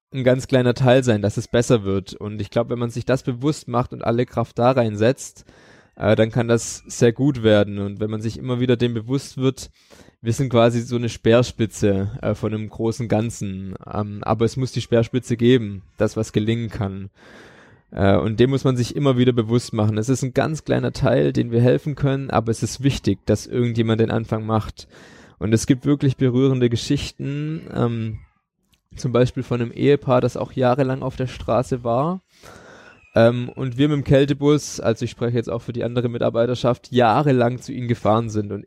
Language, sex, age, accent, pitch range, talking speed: German, male, 20-39, German, 110-130 Hz, 200 wpm